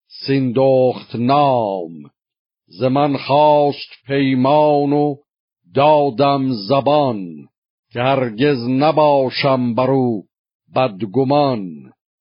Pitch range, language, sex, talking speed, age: 125-145 Hz, Persian, male, 70 wpm, 50-69